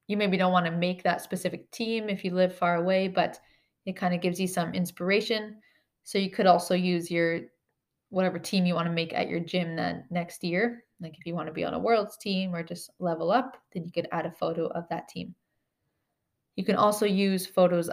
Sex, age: female, 20-39